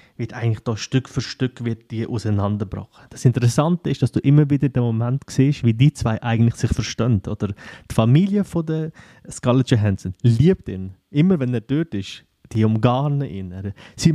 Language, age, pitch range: German, 30-49, 115-135 Hz